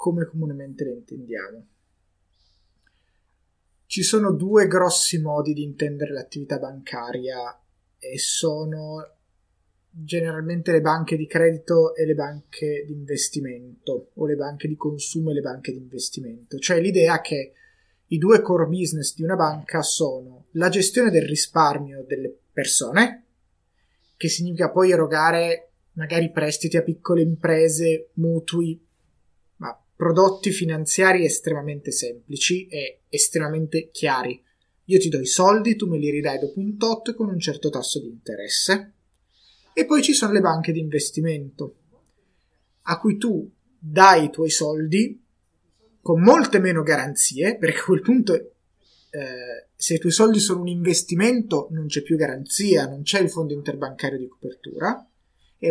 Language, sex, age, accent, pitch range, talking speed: Italian, male, 20-39, native, 145-180 Hz, 140 wpm